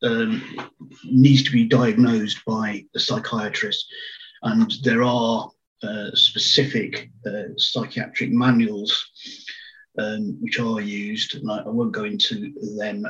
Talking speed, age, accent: 125 wpm, 50-69, British